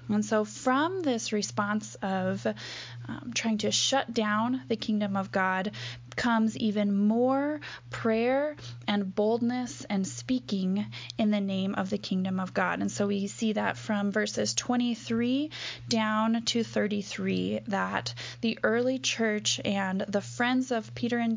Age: 10-29